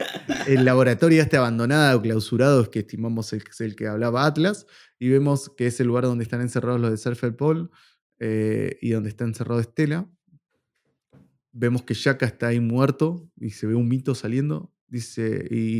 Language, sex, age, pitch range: Spanish, male, 20-39, 110-130 Hz